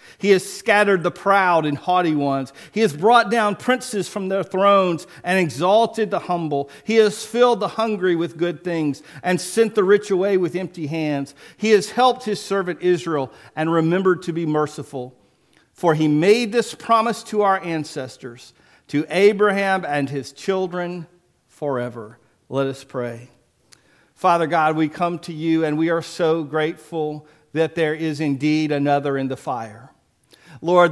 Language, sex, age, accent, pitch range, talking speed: English, male, 50-69, American, 140-175 Hz, 165 wpm